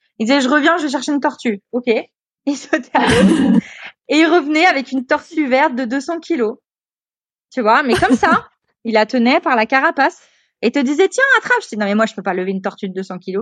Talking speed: 240 wpm